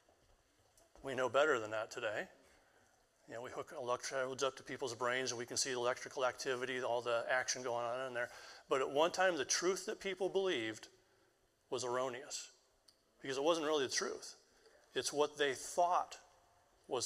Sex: male